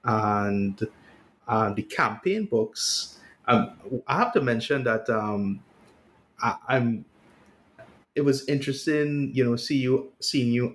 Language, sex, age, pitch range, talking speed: English, male, 20-39, 110-130 Hz, 115 wpm